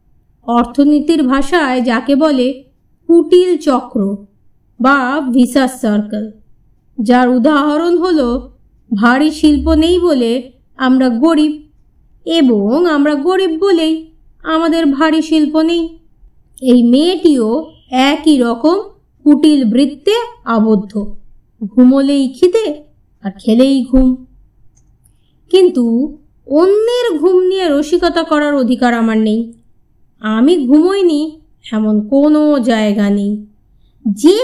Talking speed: 95 wpm